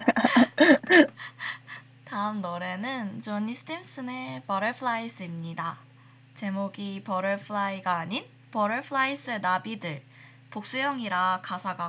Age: 20-39